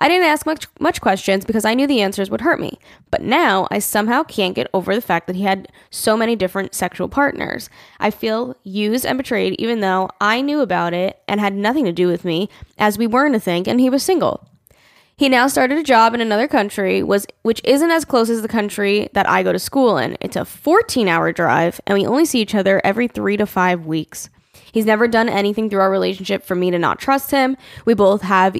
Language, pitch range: English, 195-250 Hz